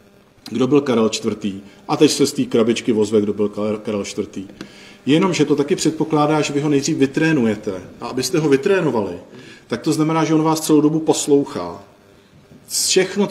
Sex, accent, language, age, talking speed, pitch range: male, native, Czech, 40-59, 170 wpm, 115-140 Hz